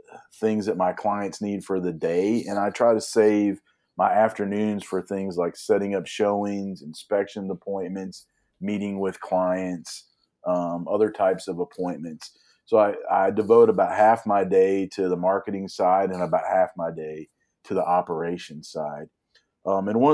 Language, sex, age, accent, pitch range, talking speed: English, male, 40-59, American, 85-100 Hz, 165 wpm